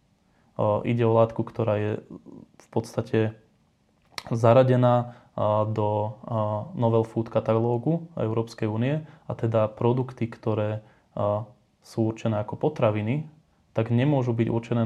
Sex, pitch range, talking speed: male, 110-120 Hz, 105 wpm